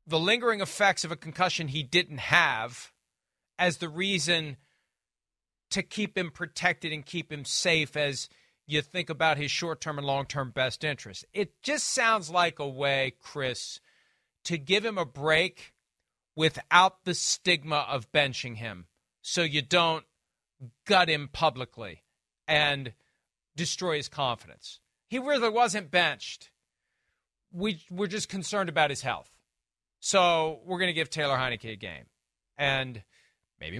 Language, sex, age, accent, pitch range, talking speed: English, male, 40-59, American, 135-180 Hz, 140 wpm